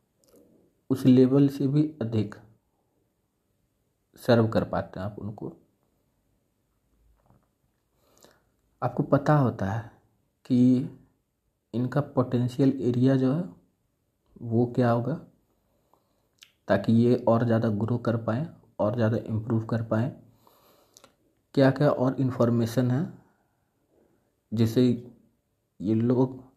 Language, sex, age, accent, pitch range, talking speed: Hindi, male, 50-69, native, 115-135 Hz, 100 wpm